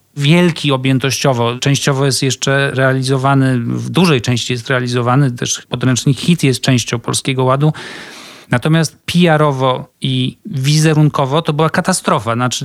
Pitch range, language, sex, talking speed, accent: 125-150 Hz, Polish, male, 125 wpm, native